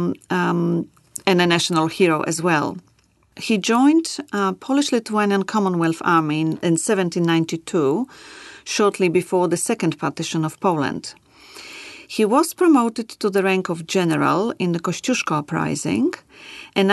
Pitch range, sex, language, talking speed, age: 165-230 Hz, female, Polish, 130 wpm, 40-59